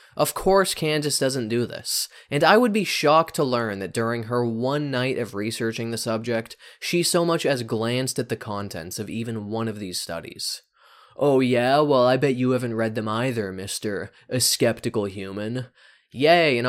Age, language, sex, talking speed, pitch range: 20-39, English, male, 185 wpm, 100-130 Hz